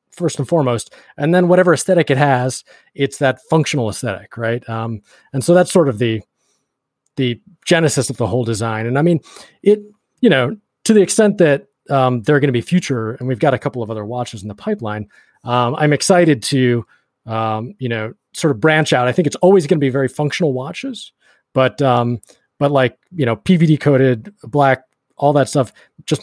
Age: 30-49